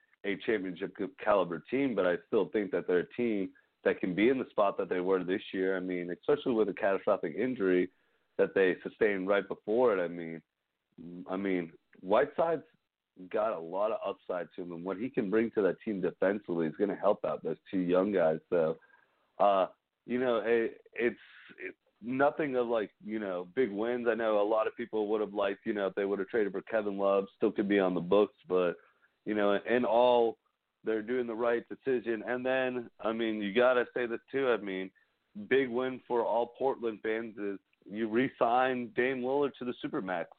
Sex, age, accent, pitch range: male, 30-49, American, 100-125 Hz